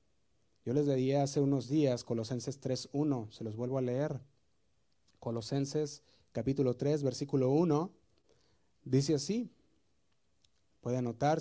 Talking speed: 115 wpm